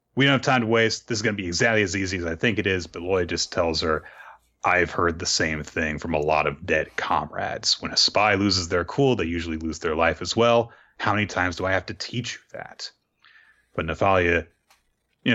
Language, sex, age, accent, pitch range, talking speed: English, male, 30-49, American, 85-120 Hz, 235 wpm